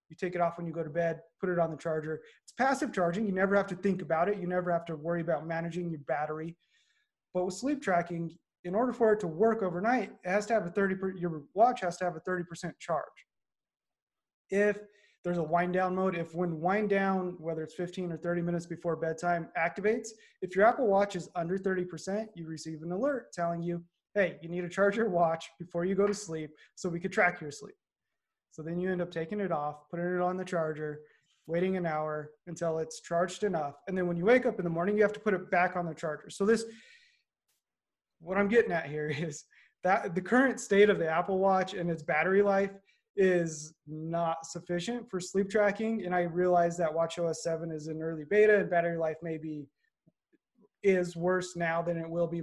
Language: English